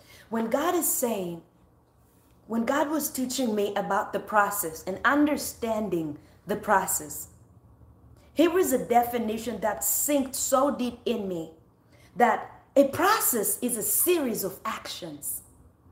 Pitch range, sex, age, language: 215-300 Hz, female, 30-49, English